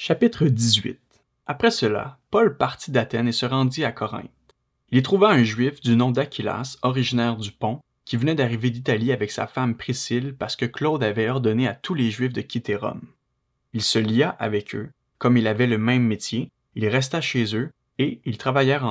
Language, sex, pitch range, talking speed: French, male, 115-135 Hz, 195 wpm